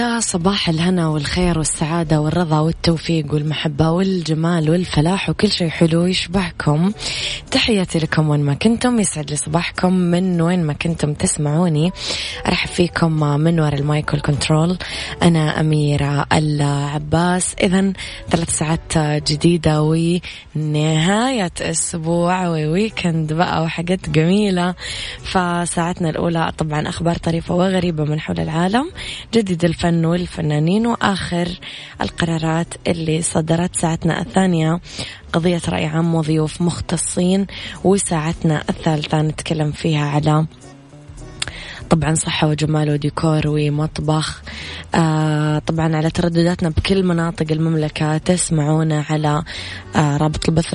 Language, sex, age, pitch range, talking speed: Arabic, female, 20-39, 155-175 Hz, 105 wpm